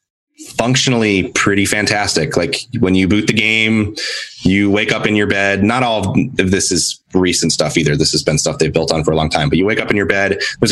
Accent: American